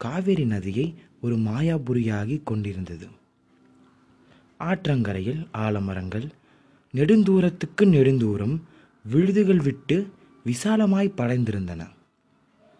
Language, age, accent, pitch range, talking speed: Tamil, 20-39, native, 110-160 Hz, 60 wpm